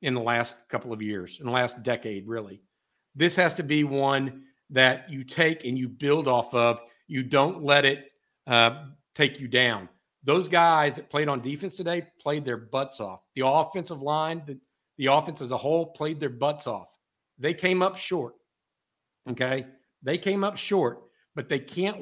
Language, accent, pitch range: English, American, 125-155 Hz